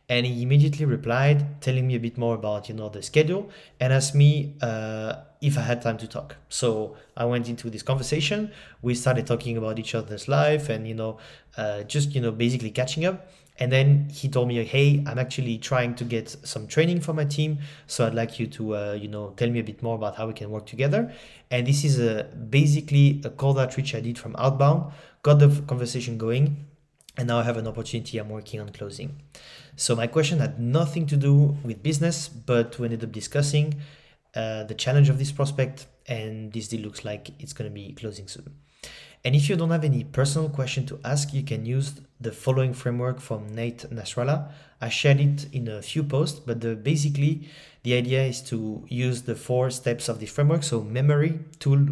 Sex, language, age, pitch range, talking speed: male, English, 20-39, 115-145 Hz, 210 wpm